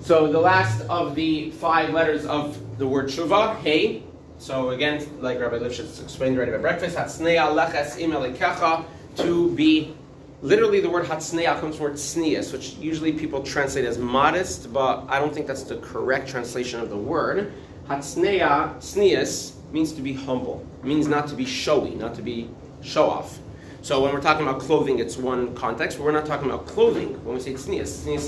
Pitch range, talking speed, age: 130-165 Hz, 180 wpm, 30-49